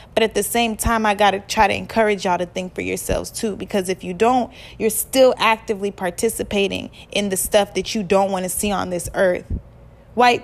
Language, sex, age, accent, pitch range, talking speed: English, female, 20-39, American, 195-245 Hz, 215 wpm